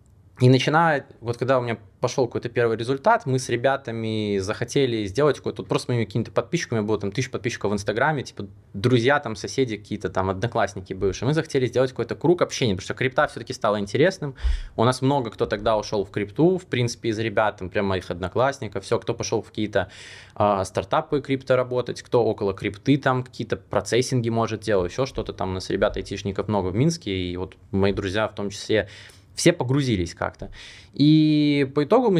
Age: 20-39